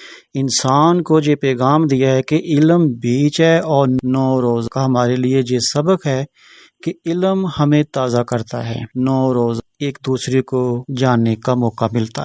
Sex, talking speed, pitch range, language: male, 175 wpm, 125-140 Hz, Urdu